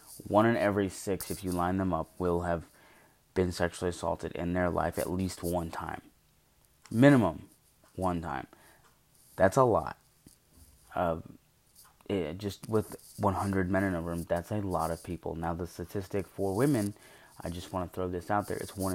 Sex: male